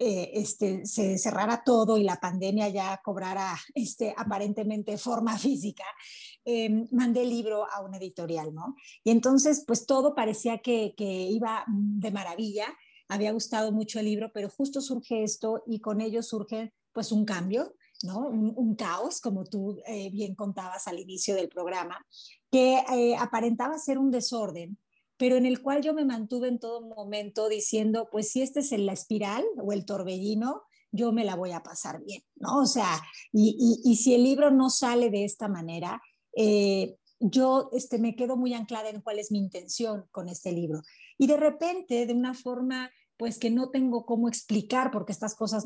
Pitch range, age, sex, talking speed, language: 205-245 Hz, 40-59, female, 185 wpm, Spanish